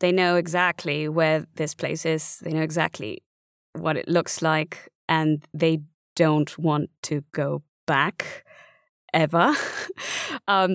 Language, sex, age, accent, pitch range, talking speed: English, female, 20-39, British, 160-200 Hz, 130 wpm